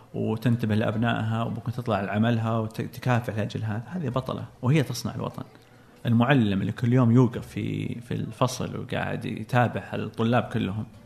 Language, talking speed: Arabic, 135 wpm